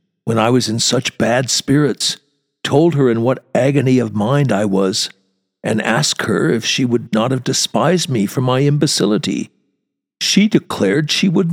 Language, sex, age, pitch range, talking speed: English, male, 60-79, 120-185 Hz, 170 wpm